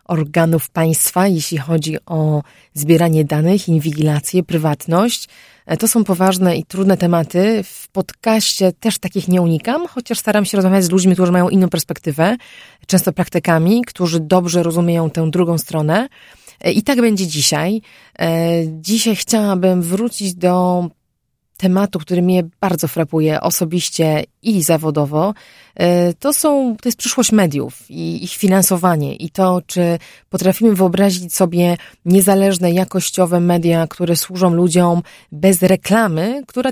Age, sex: 30-49, female